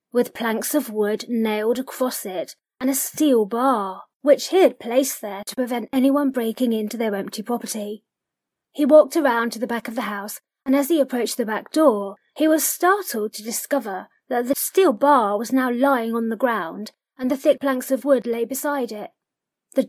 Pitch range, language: 215-270 Hz, English